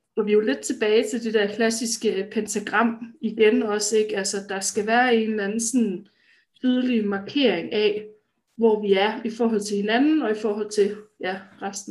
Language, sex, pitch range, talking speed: Danish, female, 205-230 Hz, 185 wpm